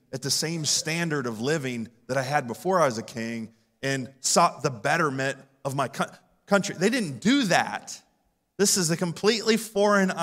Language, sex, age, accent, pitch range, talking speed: English, male, 30-49, American, 120-170 Hz, 175 wpm